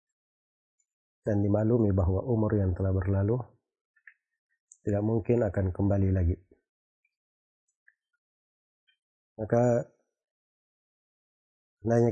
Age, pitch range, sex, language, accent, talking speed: 30-49, 100-120 Hz, male, Indonesian, native, 70 wpm